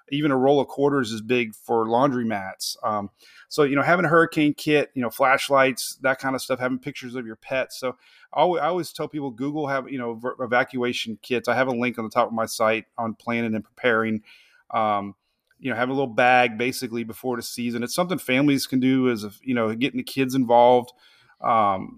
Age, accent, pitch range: 30-49, American, 110-140 Hz